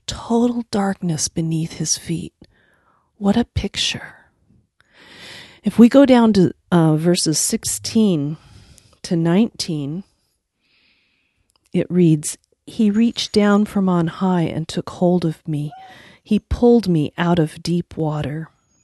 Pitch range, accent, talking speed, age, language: 145-195 Hz, American, 120 wpm, 40-59, English